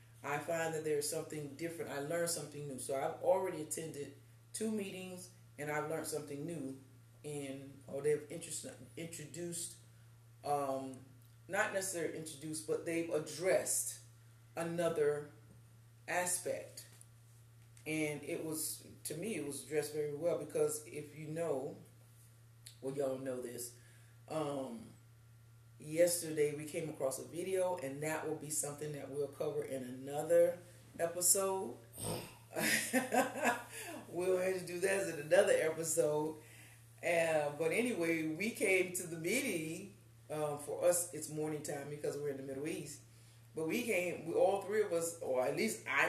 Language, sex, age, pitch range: English, female, 30-49, 125-170 Hz